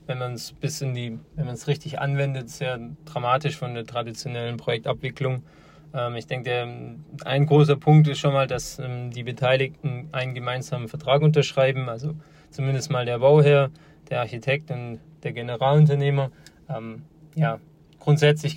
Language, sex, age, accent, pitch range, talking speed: German, male, 20-39, German, 125-150 Hz, 130 wpm